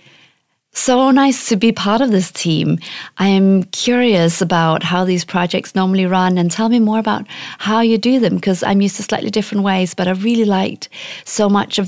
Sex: female